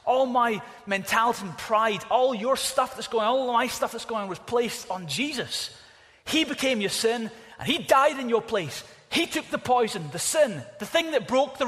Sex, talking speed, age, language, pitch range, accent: male, 215 wpm, 30-49, English, 190-260 Hz, British